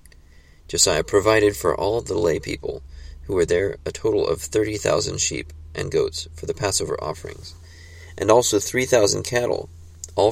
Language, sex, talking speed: English, male, 150 wpm